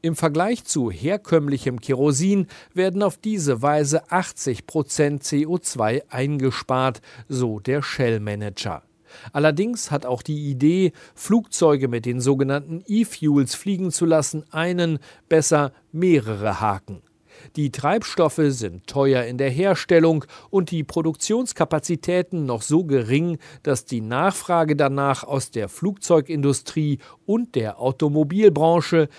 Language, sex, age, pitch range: German, male, 40-59, 125-170 Hz